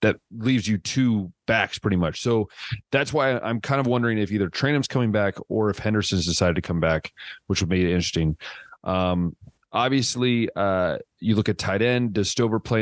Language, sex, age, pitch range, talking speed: English, male, 30-49, 95-115 Hz, 195 wpm